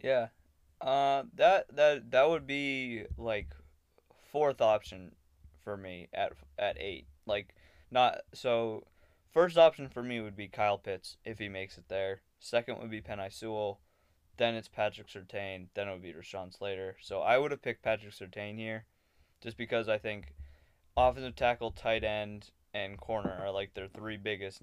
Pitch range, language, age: 95-115 Hz, English, 20-39